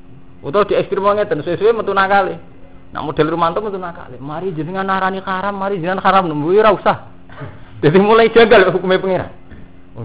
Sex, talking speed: male, 160 wpm